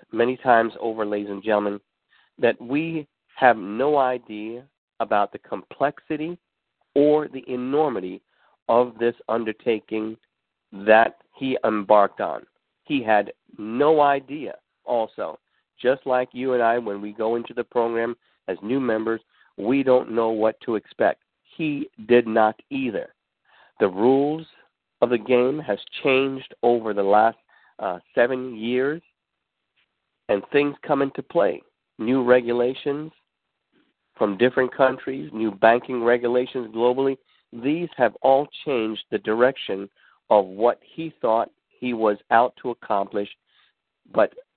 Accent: American